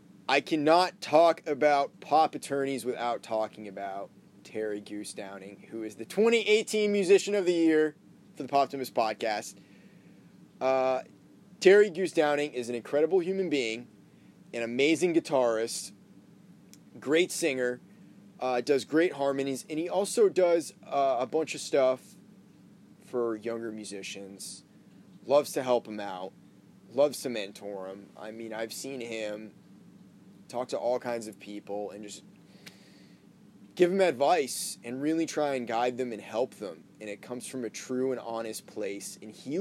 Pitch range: 110-155 Hz